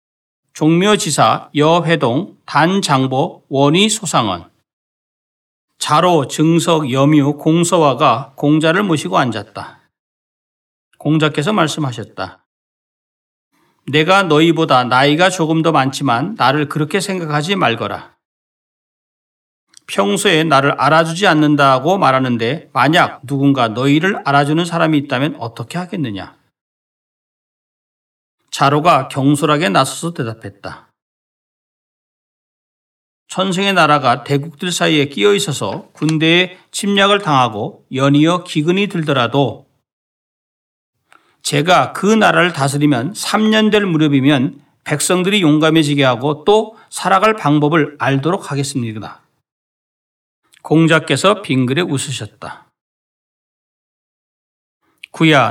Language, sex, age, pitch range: Korean, male, 40-59, 135-175 Hz